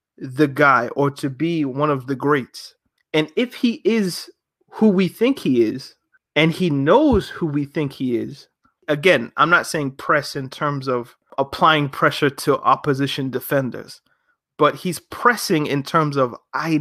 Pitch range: 135-160 Hz